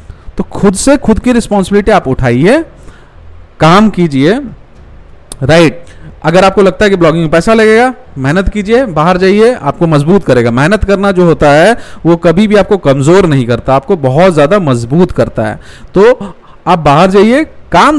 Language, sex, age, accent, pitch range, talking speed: Hindi, male, 40-59, native, 155-215 Hz, 165 wpm